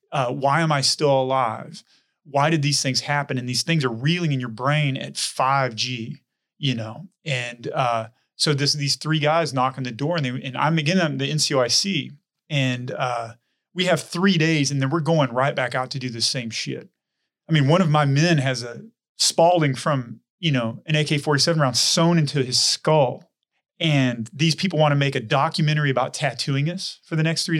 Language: English